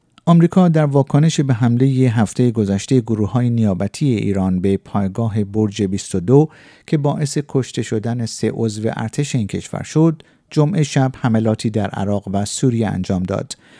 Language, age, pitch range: Persian, 50-69, 105-150 Hz